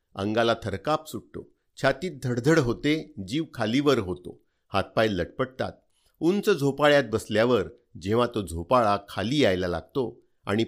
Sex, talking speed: male, 120 wpm